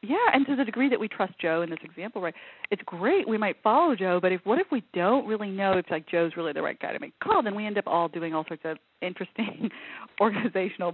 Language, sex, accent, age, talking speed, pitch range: English, female, American, 40-59, 265 wpm, 160-210 Hz